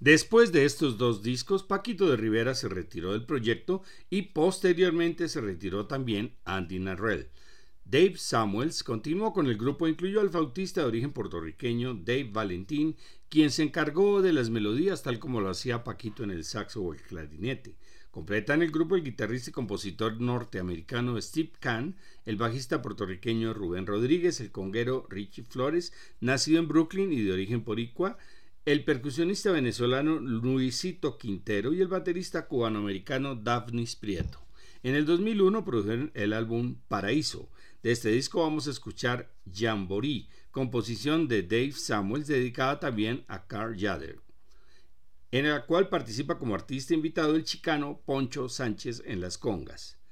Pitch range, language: 110-155 Hz, Spanish